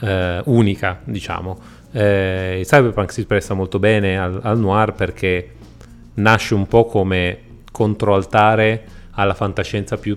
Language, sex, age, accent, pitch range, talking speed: Italian, male, 30-49, native, 90-105 Hz, 130 wpm